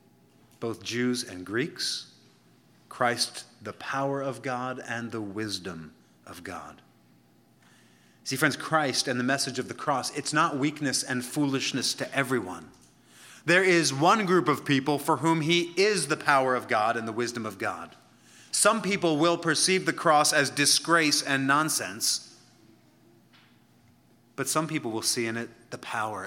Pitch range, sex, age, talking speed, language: 120-160 Hz, male, 30-49, 155 wpm, English